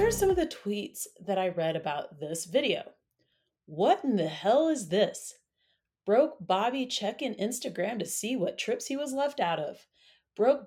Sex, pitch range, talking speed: female, 185-275 Hz, 185 wpm